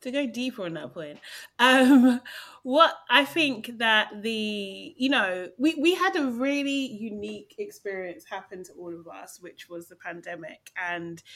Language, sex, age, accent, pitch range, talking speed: English, female, 30-49, British, 185-250 Hz, 165 wpm